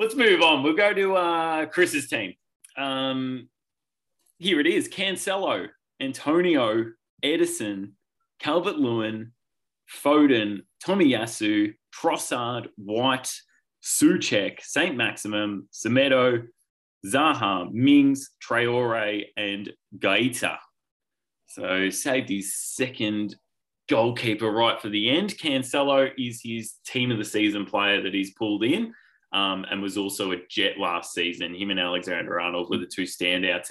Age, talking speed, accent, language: 20-39, 120 wpm, Australian, English